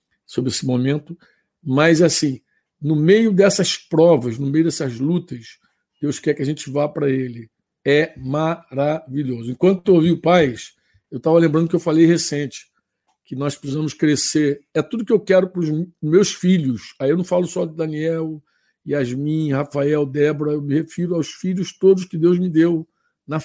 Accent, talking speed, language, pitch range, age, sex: Brazilian, 175 wpm, Portuguese, 155-205 Hz, 60-79, male